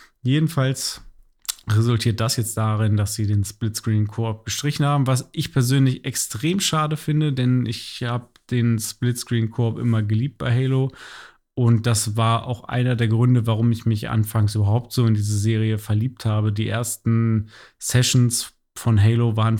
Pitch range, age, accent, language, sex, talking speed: 115-130 Hz, 30-49, German, German, male, 155 wpm